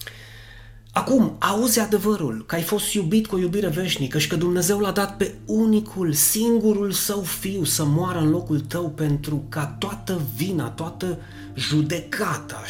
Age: 30-49